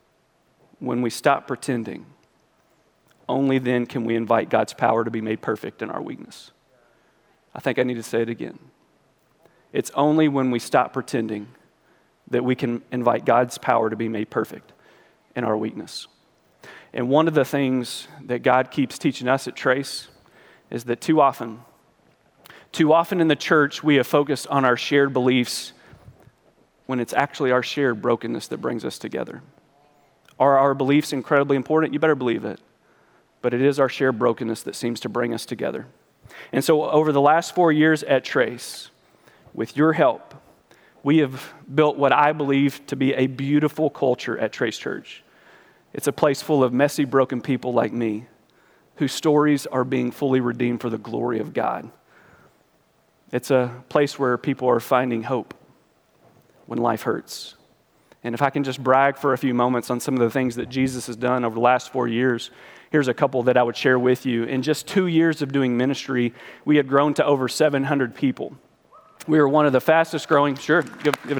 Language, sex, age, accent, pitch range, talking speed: English, male, 40-59, American, 120-145 Hz, 185 wpm